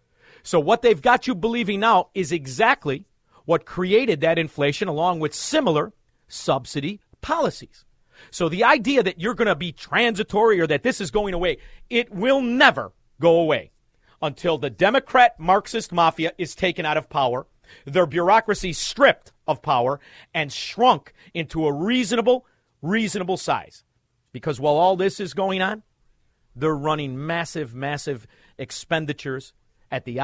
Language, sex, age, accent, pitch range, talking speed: English, male, 40-59, American, 145-210 Hz, 145 wpm